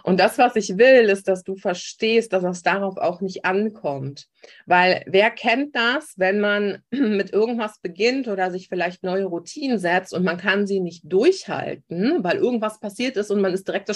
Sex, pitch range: female, 180-220 Hz